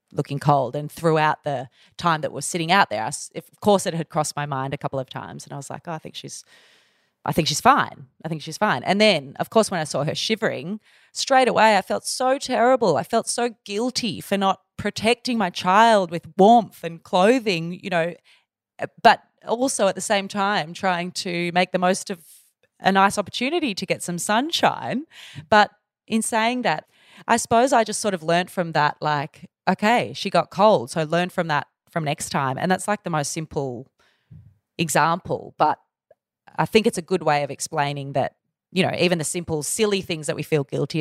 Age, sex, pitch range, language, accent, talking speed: 20-39, female, 150-210 Hz, English, Australian, 205 wpm